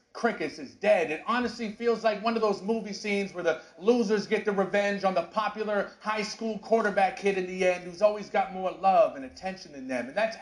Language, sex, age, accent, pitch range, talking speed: English, male, 40-59, American, 180-235 Hz, 225 wpm